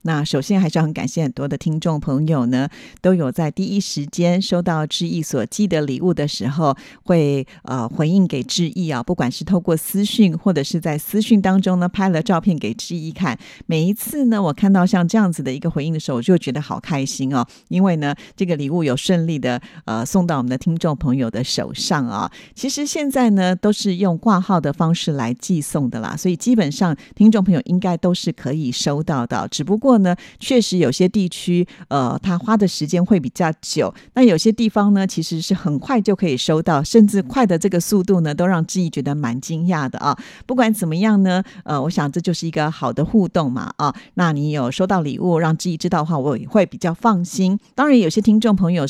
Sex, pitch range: female, 150-195 Hz